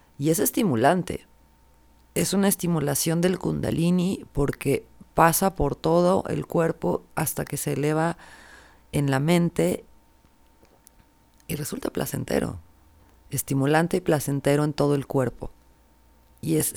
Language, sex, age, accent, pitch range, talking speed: Spanish, female, 40-59, Mexican, 120-155 Hz, 120 wpm